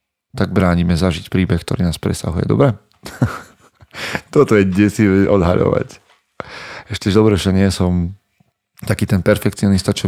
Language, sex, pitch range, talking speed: Slovak, male, 95-105 Hz, 130 wpm